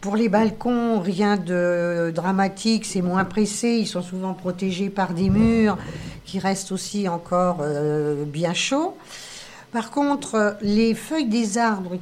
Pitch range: 175-230 Hz